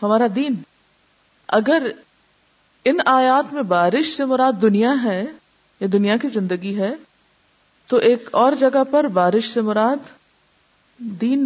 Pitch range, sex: 180-245 Hz, female